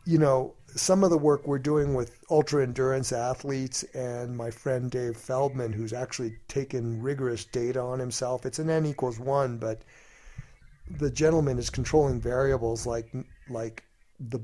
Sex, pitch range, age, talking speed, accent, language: male, 115-135 Hz, 50-69, 155 wpm, American, English